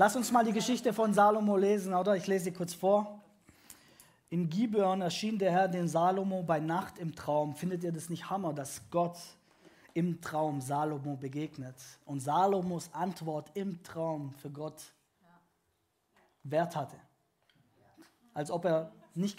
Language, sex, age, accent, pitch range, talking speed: German, male, 20-39, German, 155-210 Hz, 150 wpm